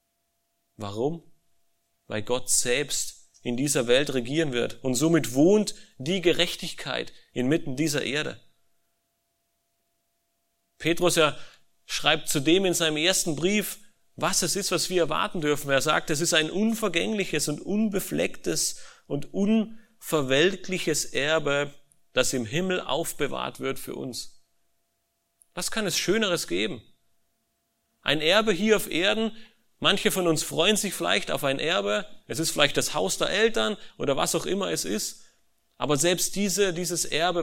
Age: 40-59